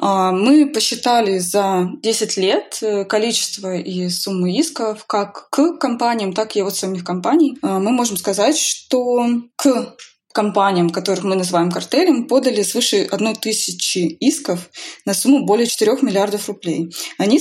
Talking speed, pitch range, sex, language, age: 130 wpm, 180-220 Hz, female, Russian, 20-39